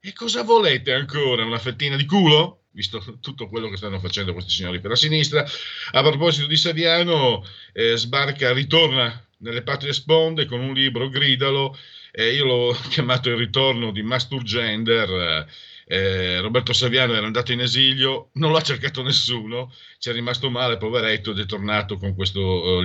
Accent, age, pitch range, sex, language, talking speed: native, 50-69, 95-125 Hz, male, Italian, 170 wpm